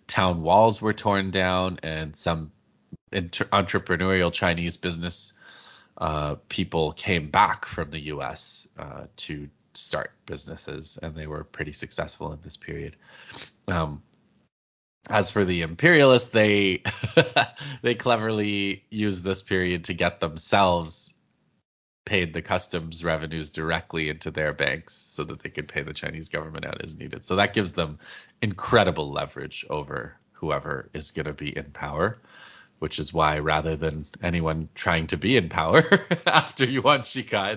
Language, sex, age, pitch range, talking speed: English, male, 20-39, 80-100 Hz, 145 wpm